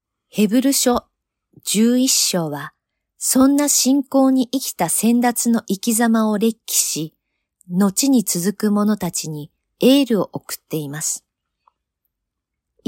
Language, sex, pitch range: Japanese, female, 160-235 Hz